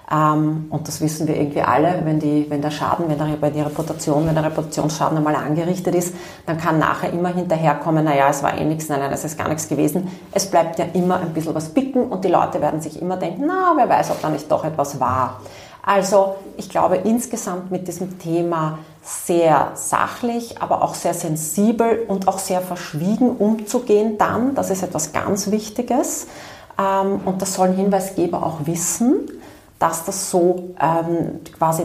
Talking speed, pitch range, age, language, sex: 185 wpm, 155-195 Hz, 30-49, German, female